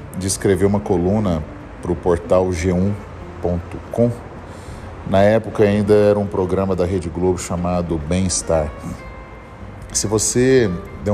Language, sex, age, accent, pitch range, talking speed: Portuguese, male, 40-59, Brazilian, 85-110 Hz, 120 wpm